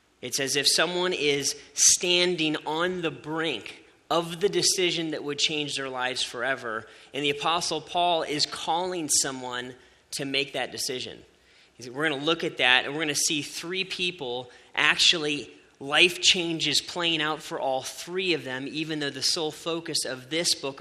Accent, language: American, English